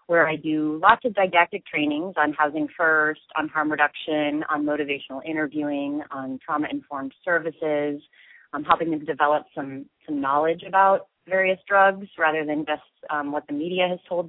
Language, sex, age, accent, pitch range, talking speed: English, female, 30-49, American, 145-165 Hz, 160 wpm